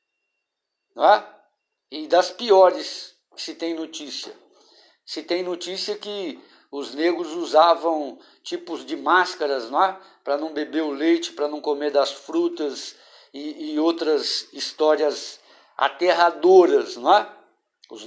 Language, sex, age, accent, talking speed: Portuguese, male, 60-79, Brazilian, 105 wpm